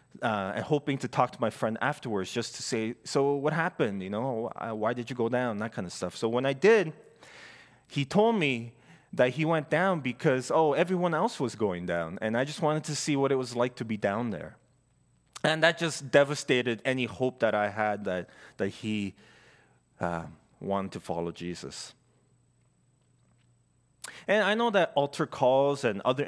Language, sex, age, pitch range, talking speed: English, male, 20-39, 110-145 Hz, 190 wpm